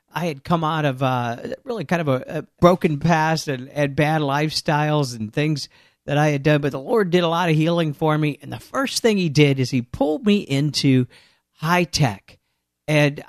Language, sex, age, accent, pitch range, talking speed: English, male, 50-69, American, 140-175 Hz, 215 wpm